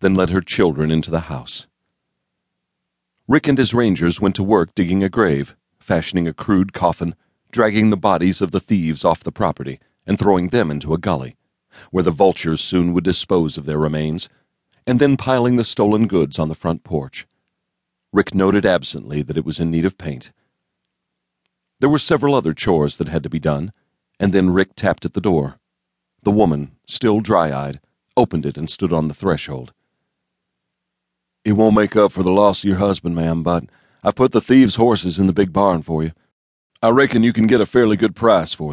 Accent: American